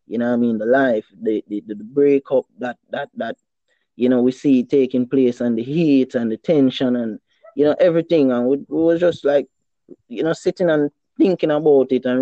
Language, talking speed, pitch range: English, 215 wpm, 120-140 Hz